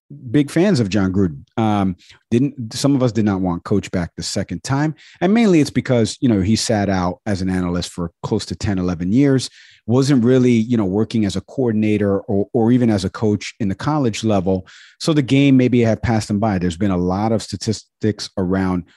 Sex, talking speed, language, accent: male, 220 wpm, English, American